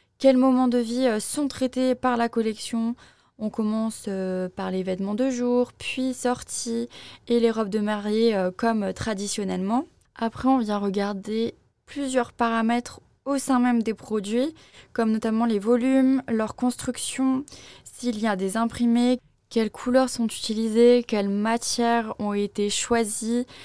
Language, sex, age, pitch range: French, female, 20-39, 210-250 Hz